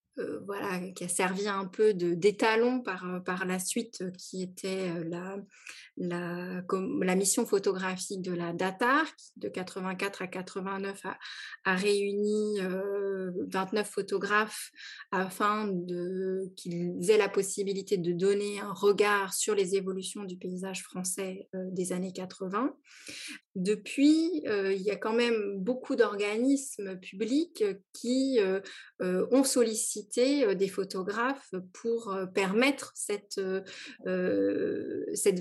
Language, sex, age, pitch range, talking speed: French, female, 20-39, 185-220 Hz, 120 wpm